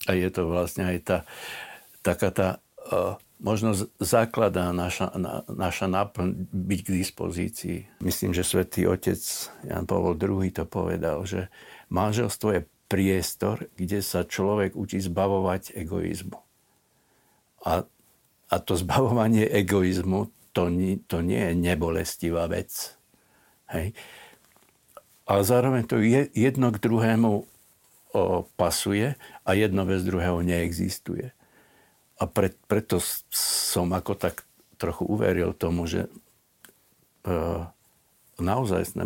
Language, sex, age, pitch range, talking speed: Slovak, male, 60-79, 90-105 Hz, 110 wpm